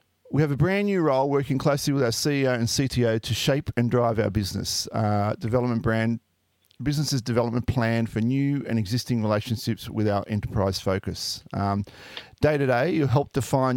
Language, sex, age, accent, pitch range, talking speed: English, male, 40-59, Australian, 110-135 Hz, 180 wpm